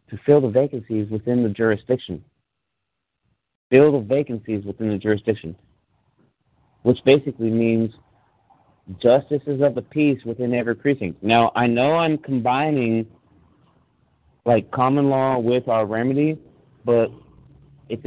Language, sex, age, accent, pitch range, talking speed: English, male, 40-59, American, 110-135 Hz, 120 wpm